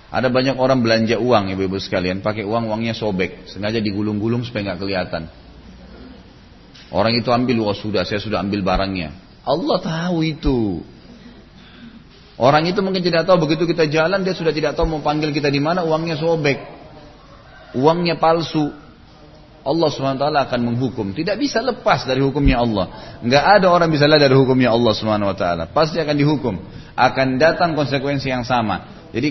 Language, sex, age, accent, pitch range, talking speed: Indonesian, male, 30-49, native, 110-155 Hz, 160 wpm